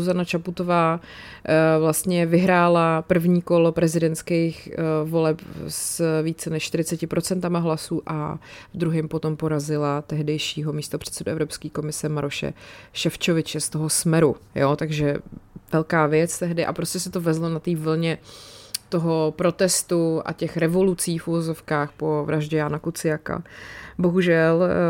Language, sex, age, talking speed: Czech, female, 30-49, 125 wpm